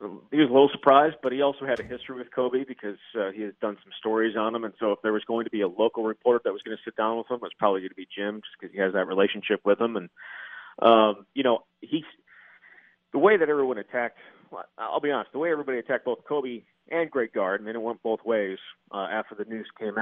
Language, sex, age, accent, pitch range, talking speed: English, male, 40-59, American, 105-125 Hz, 260 wpm